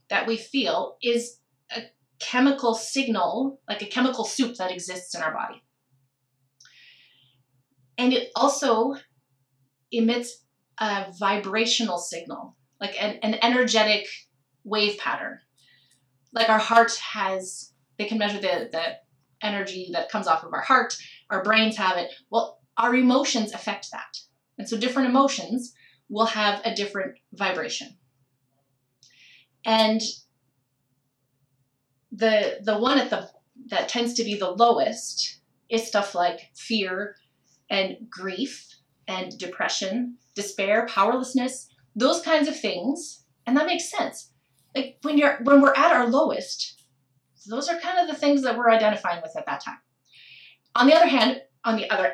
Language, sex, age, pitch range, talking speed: English, female, 30-49, 160-245 Hz, 140 wpm